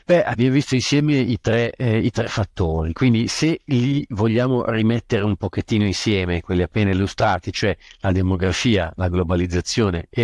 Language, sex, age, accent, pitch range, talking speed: Italian, male, 50-69, native, 95-120 Hz, 145 wpm